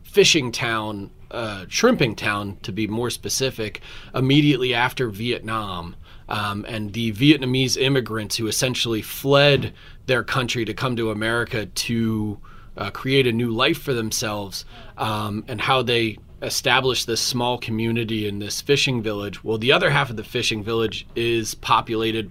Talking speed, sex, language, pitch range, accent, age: 150 wpm, male, English, 105-130 Hz, American, 30-49